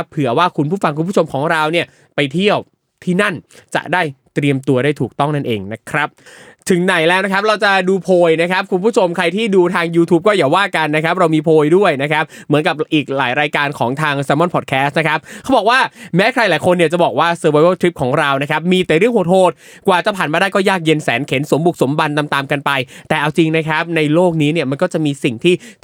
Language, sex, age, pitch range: Thai, male, 20-39, 155-205 Hz